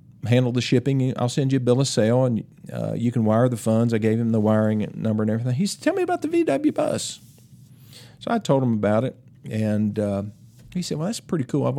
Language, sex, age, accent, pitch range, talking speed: English, male, 50-69, American, 115-150 Hz, 245 wpm